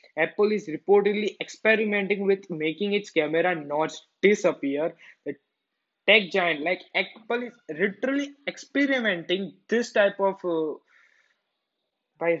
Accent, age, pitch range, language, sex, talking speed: native, 20-39, 155-195 Hz, Hindi, male, 110 wpm